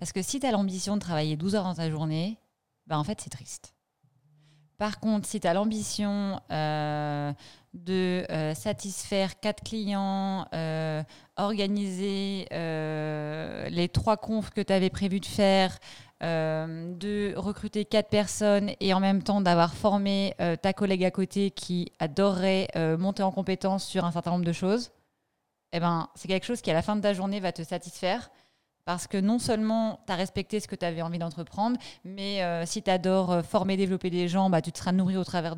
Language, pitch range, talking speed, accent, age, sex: French, 170-200 Hz, 190 wpm, French, 20-39, female